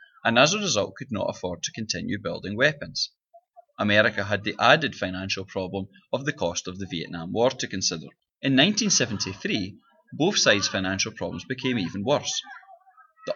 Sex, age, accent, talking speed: male, 20-39, British, 160 wpm